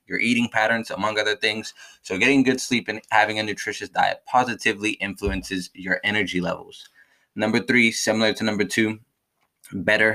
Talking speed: 160 wpm